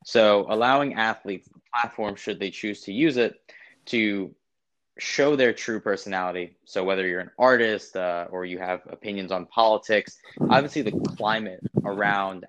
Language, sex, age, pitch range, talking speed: English, male, 20-39, 95-110 Hz, 150 wpm